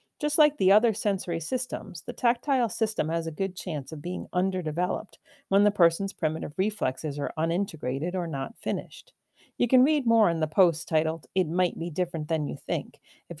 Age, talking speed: 40-59, 190 wpm